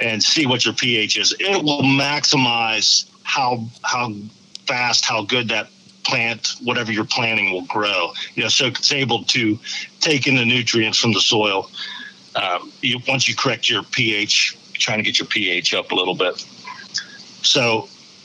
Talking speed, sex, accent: 170 wpm, male, American